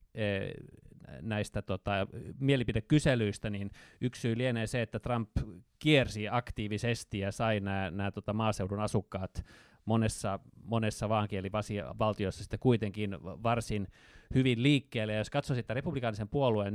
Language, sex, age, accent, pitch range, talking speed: Finnish, male, 30-49, native, 100-125 Hz, 110 wpm